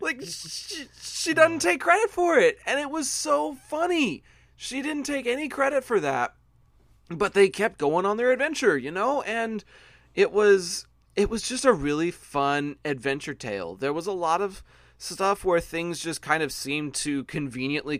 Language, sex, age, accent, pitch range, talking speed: English, male, 30-49, American, 125-165 Hz, 180 wpm